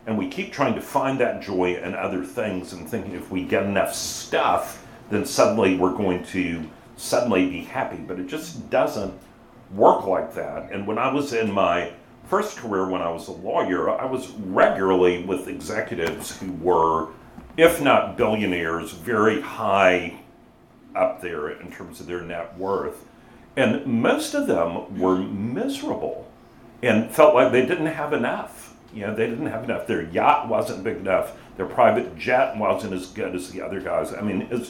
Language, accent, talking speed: English, American, 180 wpm